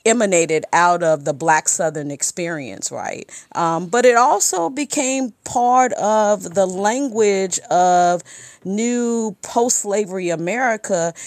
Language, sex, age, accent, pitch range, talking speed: English, female, 40-59, American, 170-215 Hz, 110 wpm